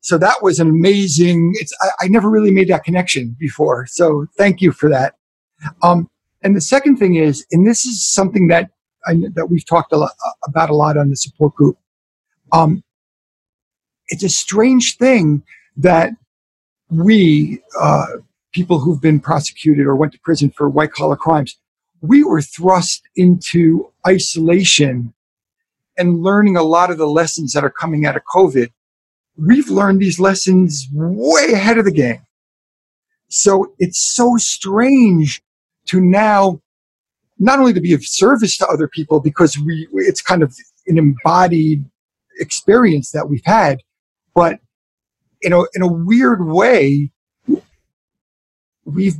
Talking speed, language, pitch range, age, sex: 150 wpm, English, 150-195 Hz, 50-69, male